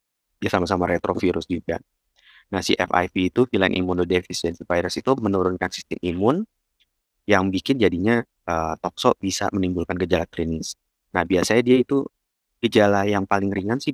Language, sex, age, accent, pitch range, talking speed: Indonesian, male, 20-39, native, 90-105 Hz, 140 wpm